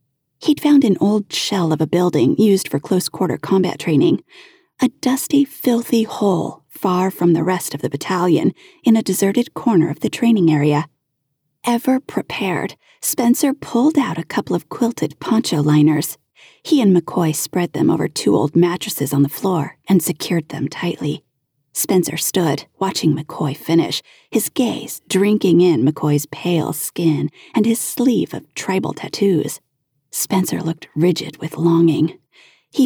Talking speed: 150 wpm